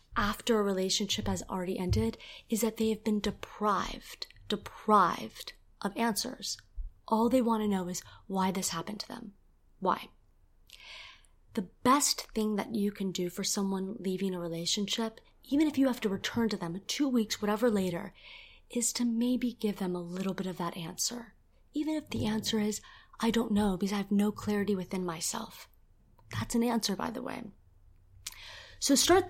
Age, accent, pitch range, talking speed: 20-39, American, 185-225 Hz, 175 wpm